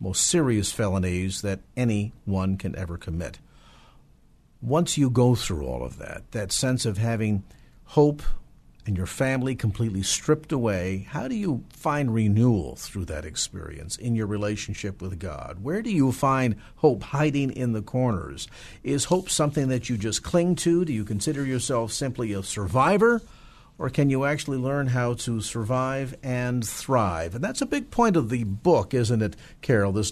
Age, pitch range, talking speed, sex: 50-69, 100-135 Hz, 170 wpm, male